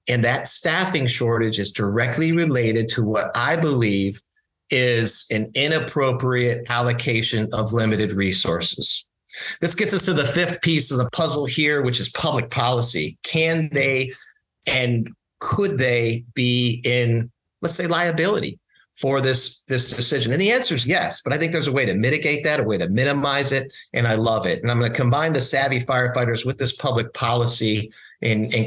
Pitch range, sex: 115-140 Hz, male